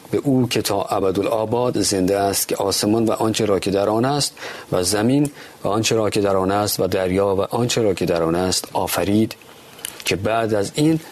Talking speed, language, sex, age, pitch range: 215 wpm, Persian, male, 40-59, 95-115 Hz